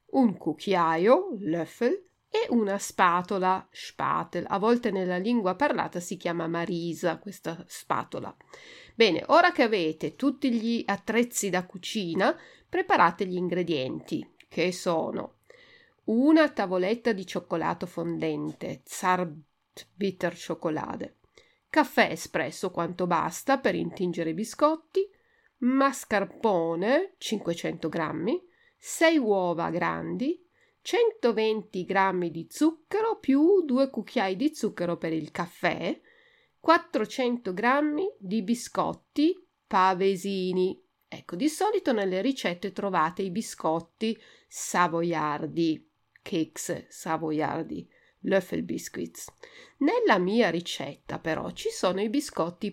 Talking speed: 100 wpm